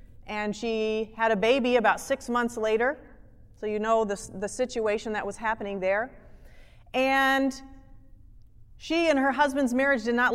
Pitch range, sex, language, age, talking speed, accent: 190-255 Hz, female, English, 30-49, 155 wpm, American